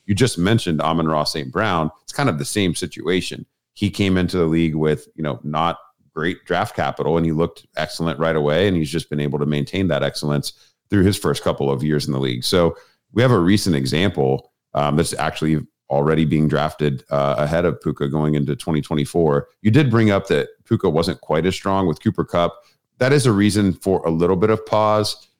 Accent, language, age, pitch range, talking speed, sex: American, English, 40-59, 75-95 Hz, 215 wpm, male